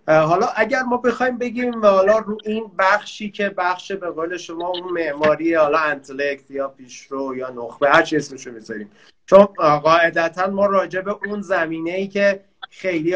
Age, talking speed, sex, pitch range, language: 30-49, 165 wpm, male, 145-195 Hz, Persian